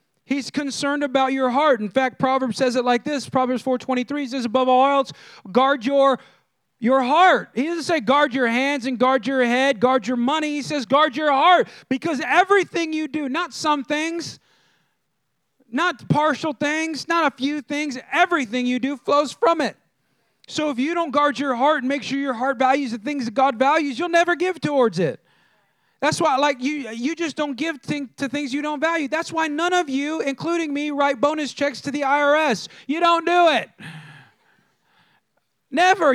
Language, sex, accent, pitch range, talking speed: English, male, American, 245-310 Hz, 190 wpm